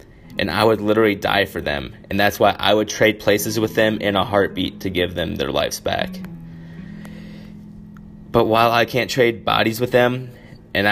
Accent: American